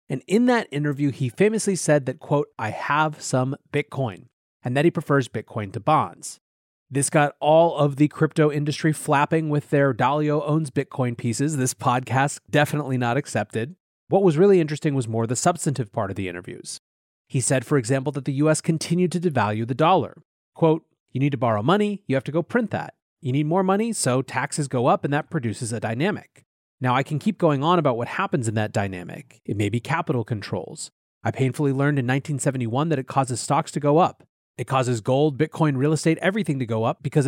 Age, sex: 30-49, male